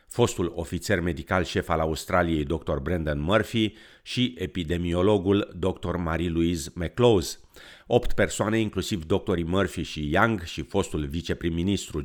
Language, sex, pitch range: Romanian, male, 80-105 Hz